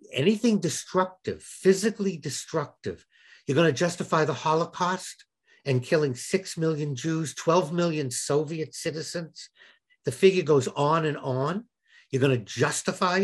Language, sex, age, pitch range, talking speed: English, male, 60-79, 130-185 Hz, 130 wpm